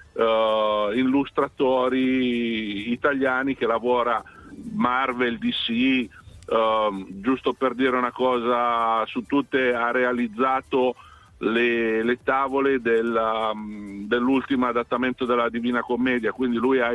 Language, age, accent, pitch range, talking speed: Italian, 50-69, native, 115-130 Hz, 90 wpm